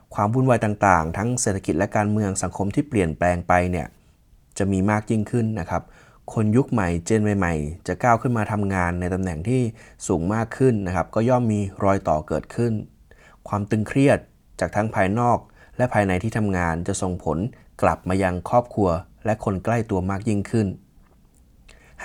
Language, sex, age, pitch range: Thai, male, 20-39, 90-115 Hz